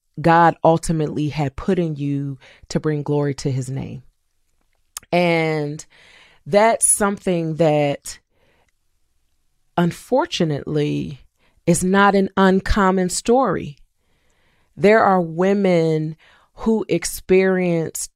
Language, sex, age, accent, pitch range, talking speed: English, female, 30-49, American, 150-175 Hz, 90 wpm